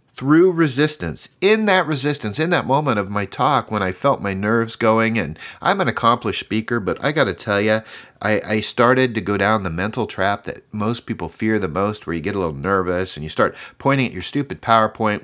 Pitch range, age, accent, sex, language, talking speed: 100-135 Hz, 40-59, American, male, English, 225 wpm